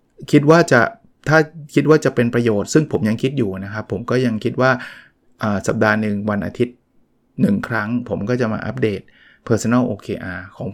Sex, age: male, 20-39